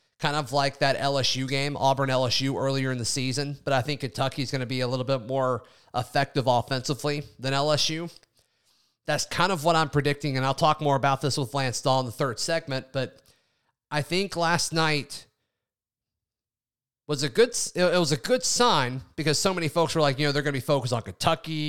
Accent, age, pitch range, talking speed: American, 30-49, 130-160 Hz, 210 wpm